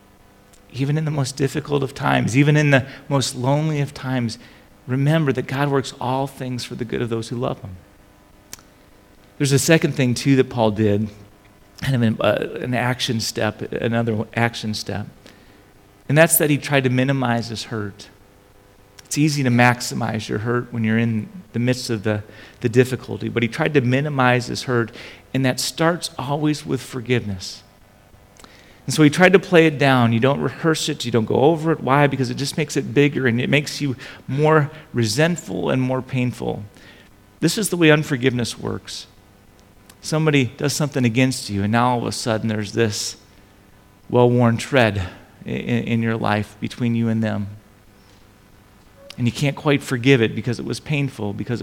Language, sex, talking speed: English, male, 180 wpm